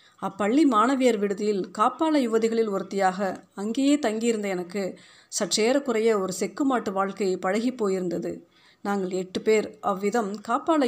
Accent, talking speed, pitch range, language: native, 110 wpm, 195-245 Hz, Tamil